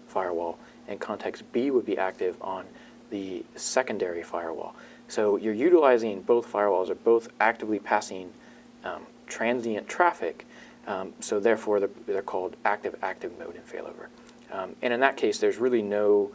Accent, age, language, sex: American, 40-59, English, male